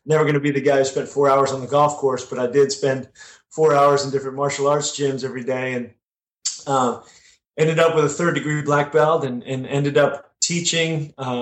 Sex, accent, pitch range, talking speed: male, American, 130-150 Hz, 225 wpm